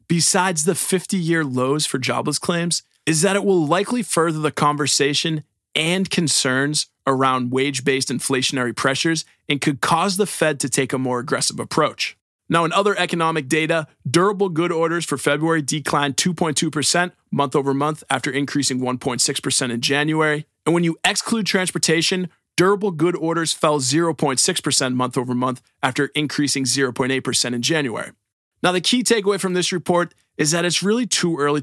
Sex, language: male, English